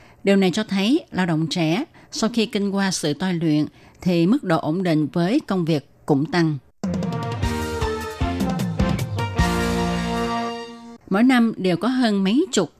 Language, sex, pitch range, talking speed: Vietnamese, female, 155-200 Hz, 145 wpm